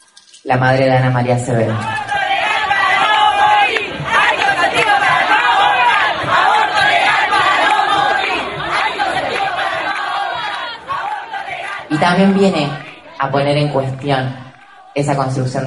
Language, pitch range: Spanish, 135-190 Hz